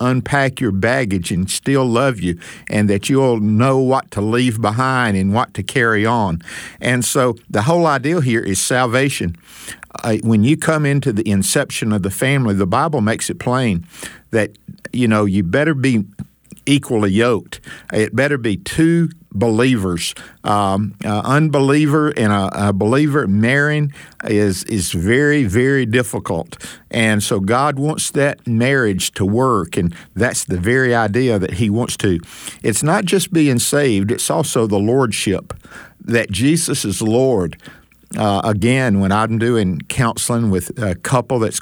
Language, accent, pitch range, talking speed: English, American, 100-135 Hz, 155 wpm